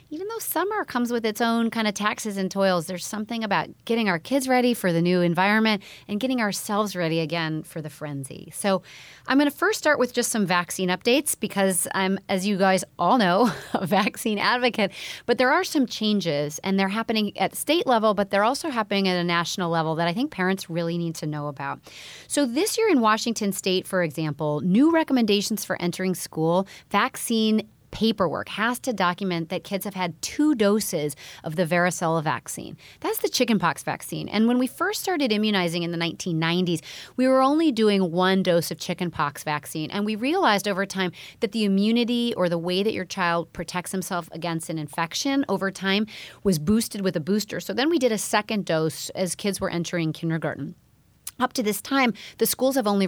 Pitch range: 175-230 Hz